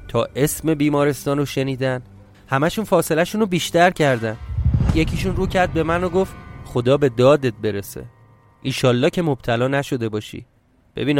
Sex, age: male, 30-49